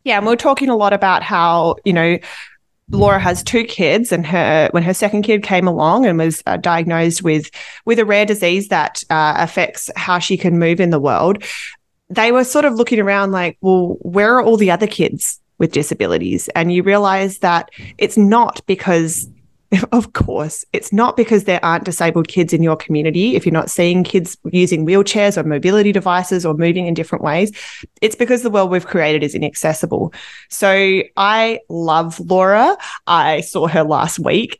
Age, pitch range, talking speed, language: 20-39, 165-205 Hz, 185 wpm, English